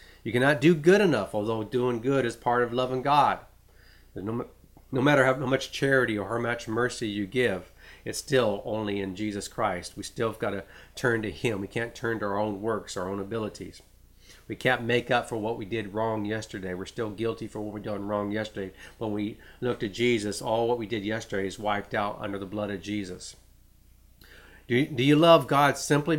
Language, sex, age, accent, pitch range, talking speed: English, male, 40-59, American, 100-120 Hz, 210 wpm